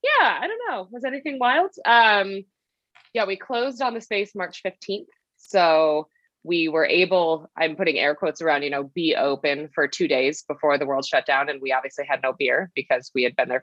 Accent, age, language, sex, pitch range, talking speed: American, 20-39, English, female, 145-195 Hz, 210 wpm